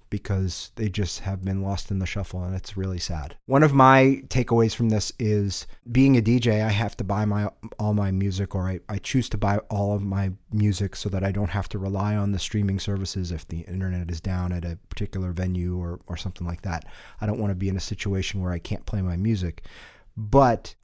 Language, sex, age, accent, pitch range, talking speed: English, male, 30-49, American, 95-110 Hz, 230 wpm